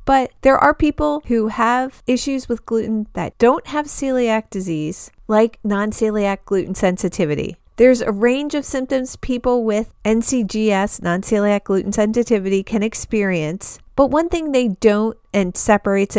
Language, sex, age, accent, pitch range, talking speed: English, female, 40-59, American, 190-250 Hz, 140 wpm